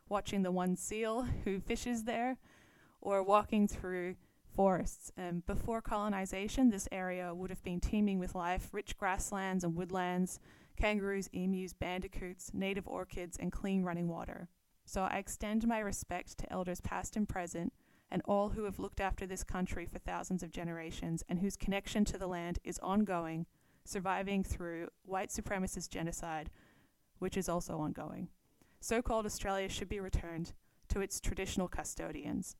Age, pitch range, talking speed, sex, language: 20-39, 180-210 Hz, 155 wpm, female, English